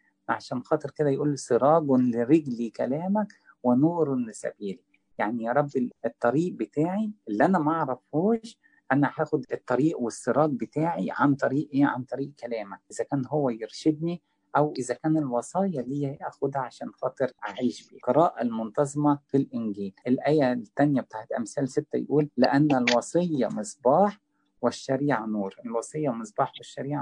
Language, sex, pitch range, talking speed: English, male, 120-150 Hz, 135 wpm